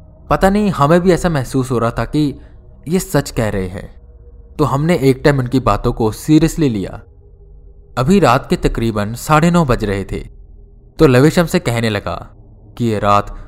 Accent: native